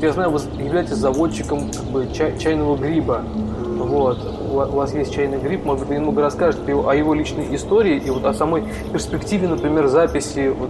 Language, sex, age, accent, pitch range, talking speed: Russian, male, 20-39, native, 125-155 Hz, 155 wpm